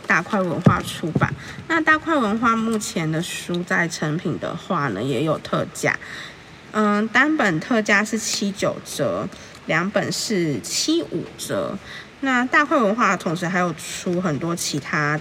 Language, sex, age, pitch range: Chinese, female, 20-39, 170-225 Hz